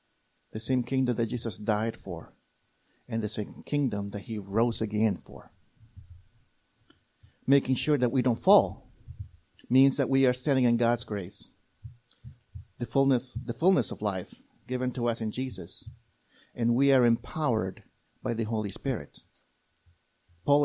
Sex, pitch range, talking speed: male, 110-140 Hz, 140 wpm